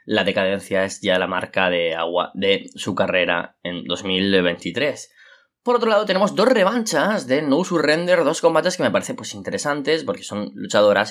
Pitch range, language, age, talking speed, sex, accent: 100-120 Hz, Spanish, 20-39, 175 wpm, male, Spanish